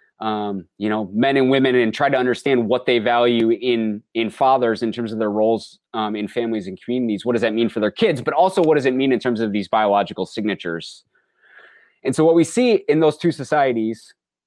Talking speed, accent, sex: 225 wpm, American, male